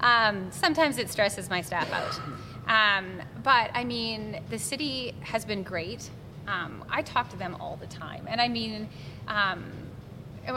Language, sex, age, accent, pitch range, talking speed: English, female, 20-39, American, 175-230 Hz, 160 wpm